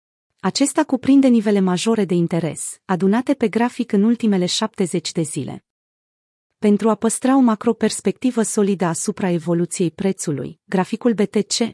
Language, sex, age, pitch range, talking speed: Romanian, female, 30-49, 180-225 Hz, 130 wpm